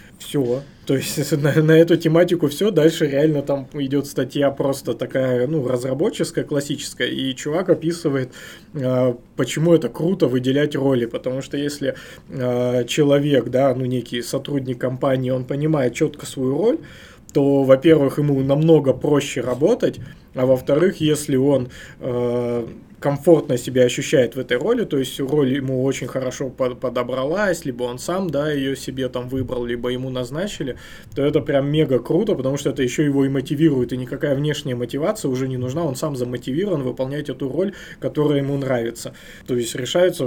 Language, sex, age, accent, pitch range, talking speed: Russian, male, 20-39, native, 125-150 Hz, 160 wpm